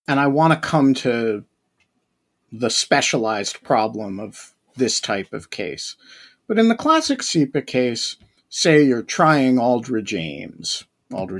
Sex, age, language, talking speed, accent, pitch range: male, 50-69, English, 135 wpm, American, 130-165 Hz